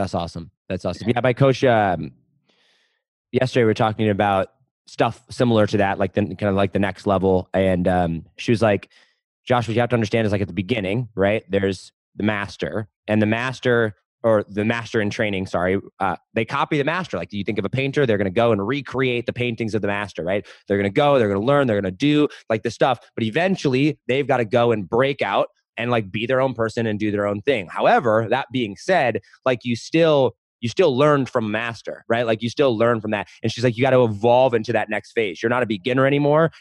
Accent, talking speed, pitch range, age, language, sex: American, 240 wpm, 105-130 Hz, 20-39, English, male